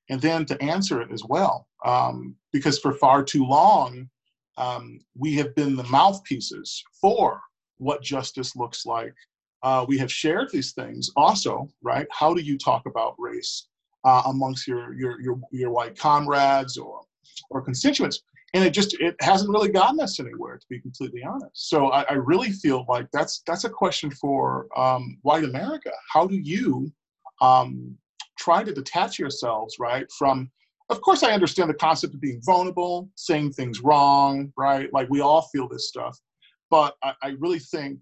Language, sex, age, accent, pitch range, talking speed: English, male, 40-59, American, 125-155 Hz, 175 wpm